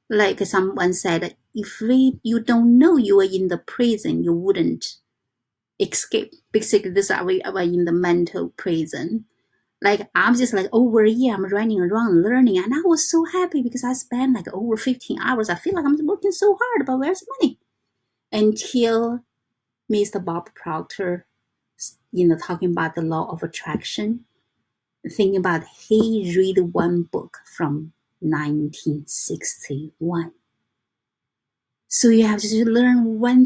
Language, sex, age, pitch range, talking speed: English, female, 30-49, 180-245 Hz, 150 wpm